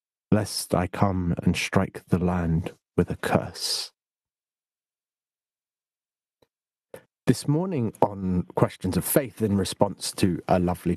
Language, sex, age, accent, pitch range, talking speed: English, male, 40-59, British, 90-115 Hz, 115 wpm